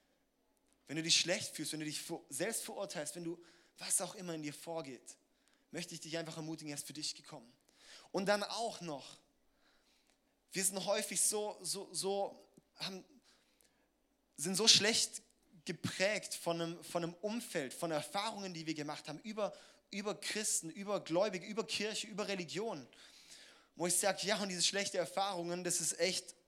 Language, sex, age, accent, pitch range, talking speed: German, male, 20-39, German, 170-205 Hz, 170 wpm